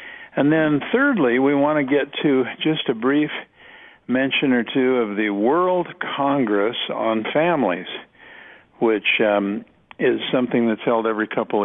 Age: 50-69